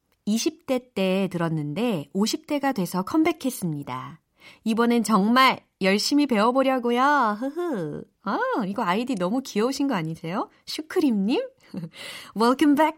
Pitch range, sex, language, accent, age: 175-275 Hz, female, Korean, native, 30-49